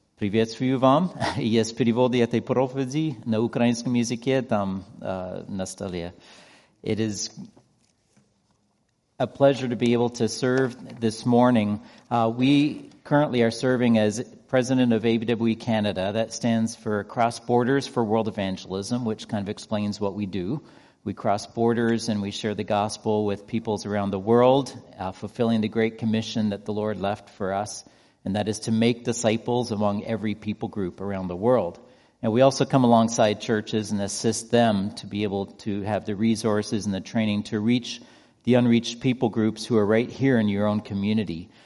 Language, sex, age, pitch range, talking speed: English, male, 40-59, 105-120 Hz, 155 wpm